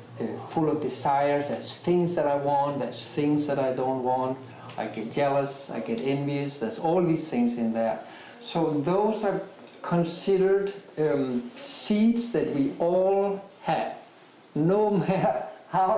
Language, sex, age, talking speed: English, male, 50-69, 145 wpm